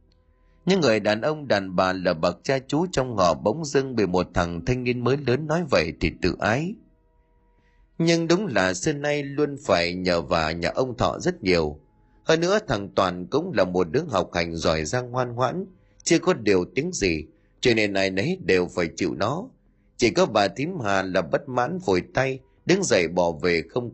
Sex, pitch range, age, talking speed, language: male, 85-140 Hz, 30-49, 205 wpm, Vietnamese